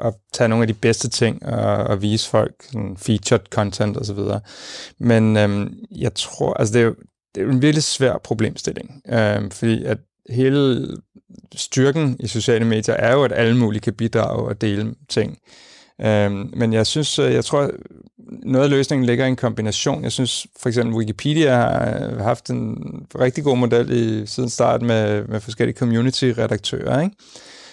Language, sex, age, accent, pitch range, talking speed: Danish, male, 30-49, native, 110-125 Hz, 175 wpm